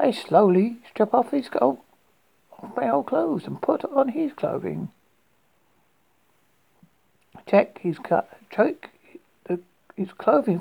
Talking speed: 115 wpm